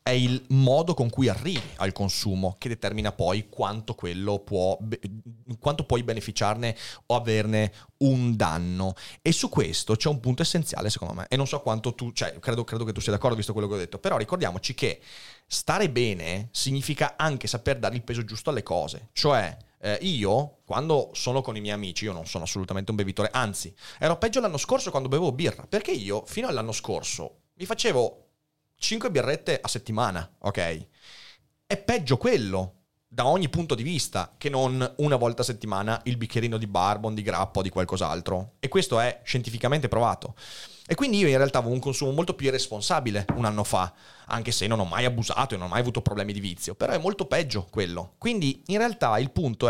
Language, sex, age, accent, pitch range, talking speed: Italian, male, 30-49, native, 105-135 Hz, 195 wpm